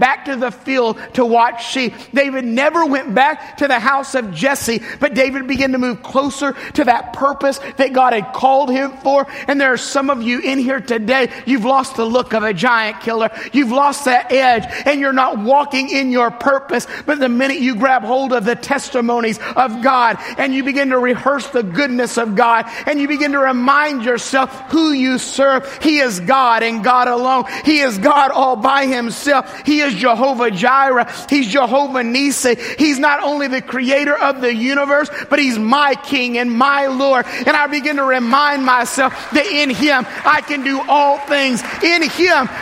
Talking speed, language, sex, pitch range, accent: 195 wpm, English, male, 240-280 Hz, American